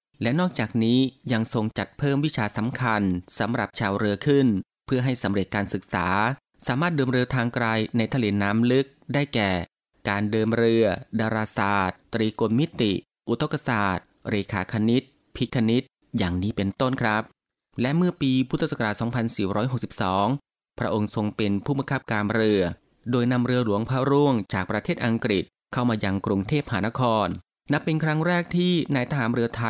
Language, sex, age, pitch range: Thai, male, 20-39, 100-130 Hz